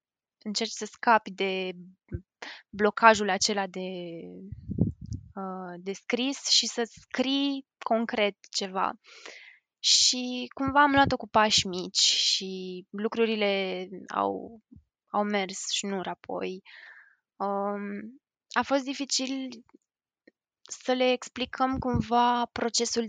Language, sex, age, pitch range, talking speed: Romanian, female, 20-39, 195-245 Hz, 95 wpm